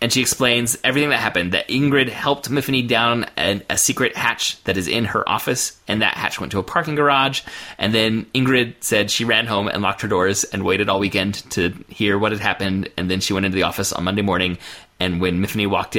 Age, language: 30-49, English